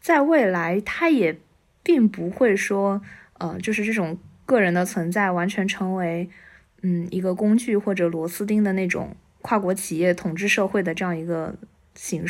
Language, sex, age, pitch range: Chinese, female, 20-39, 185-235 Hz